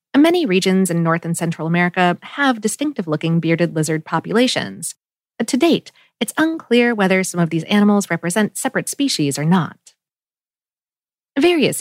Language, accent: English, American